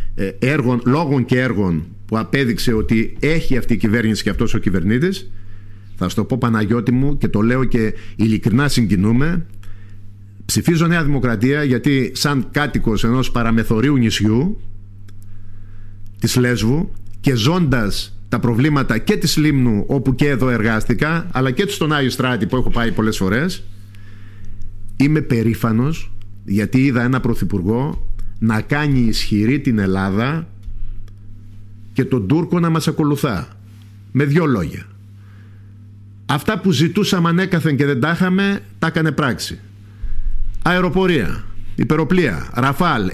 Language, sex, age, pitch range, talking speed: Greek, male, 50-69, 100-145 Hz, 130 wpm